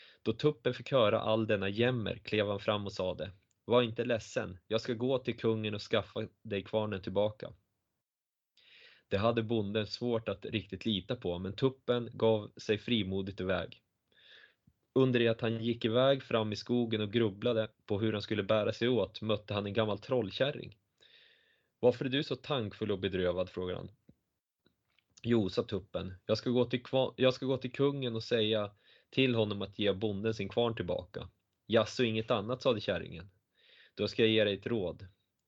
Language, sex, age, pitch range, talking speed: Swedish, male, 20-39, 100-120 Hz, 180 wpm